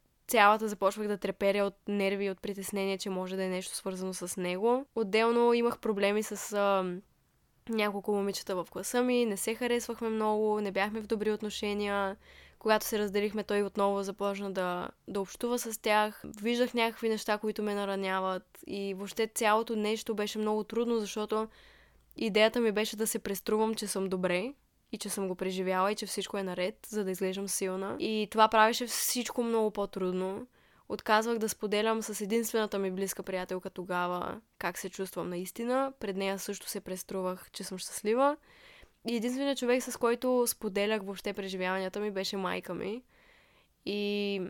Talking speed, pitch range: 165 wpm, 195-225 Hz